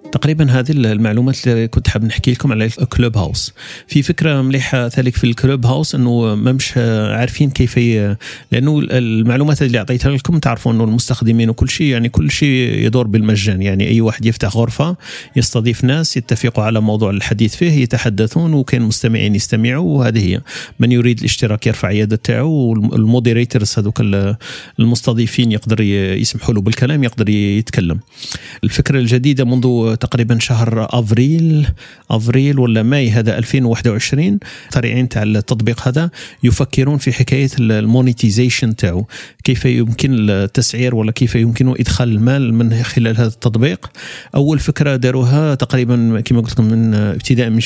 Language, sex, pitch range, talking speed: Arabic, male, 115-130 Hz, 140 wpm